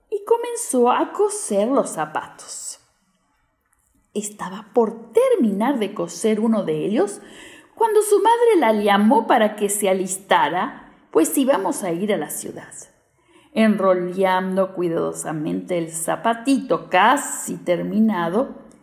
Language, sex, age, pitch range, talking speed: Spanish, female, 50-69, 200-305 Hz, 110 wpm